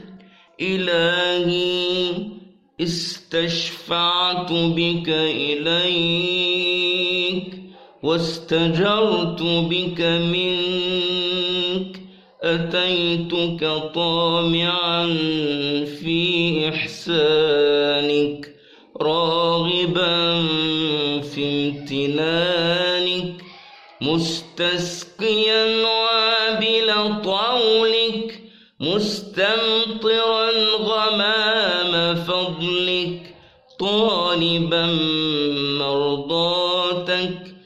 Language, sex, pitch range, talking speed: Turkish, male, 170-215 Hz, 35 wpm